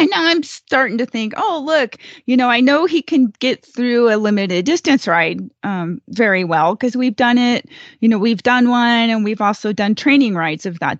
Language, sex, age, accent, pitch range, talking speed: English, female, 30-49, American, 210-265 Hz, 215 wpm